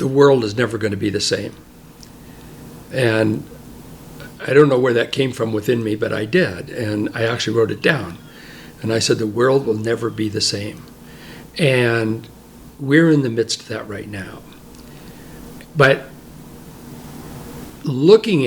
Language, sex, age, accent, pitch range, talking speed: English, male, 60-79, American, 110-140 Hz, 160 wpm